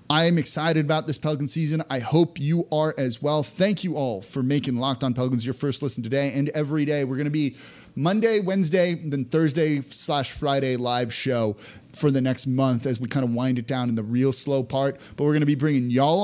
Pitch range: 125-160 Hz